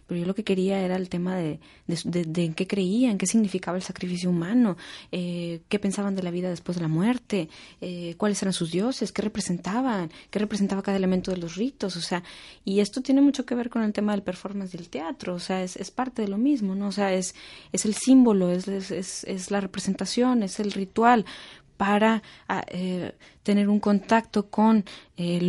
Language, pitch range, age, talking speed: Spanish, 180-205 Hz, 20-39, 210 wpm